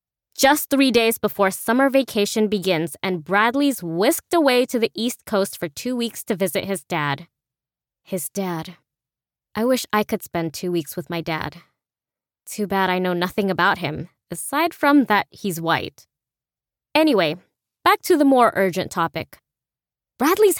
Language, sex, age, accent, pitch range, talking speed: English, female, 20-39, American, 180-235 Hz, 155 wpm